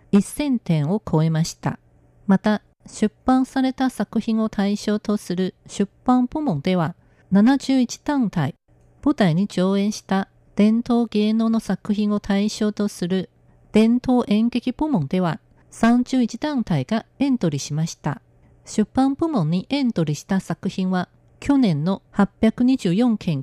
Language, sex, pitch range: Japanese, female, 190-245 Hz